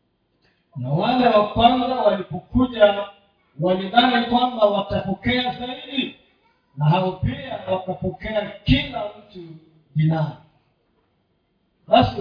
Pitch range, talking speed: 155-210 Hz, 70 wpm